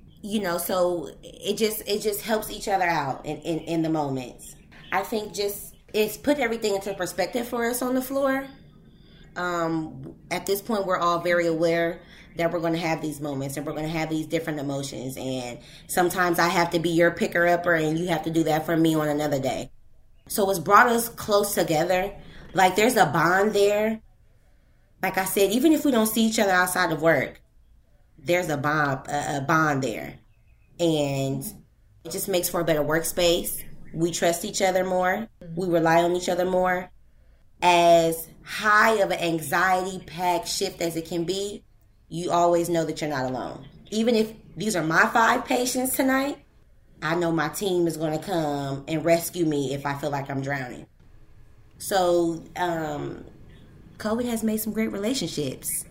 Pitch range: 155-200 Hz